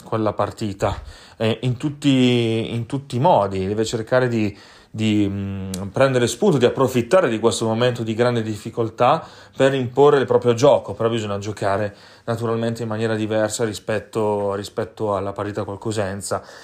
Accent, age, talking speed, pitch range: native, 30-49, 150 wpm, 105-125 Hz